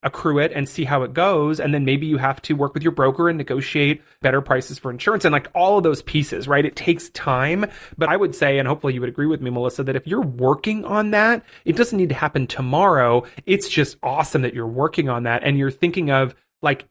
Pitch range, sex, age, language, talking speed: 130-165 Hz, male, 30-49, English, 250 wpm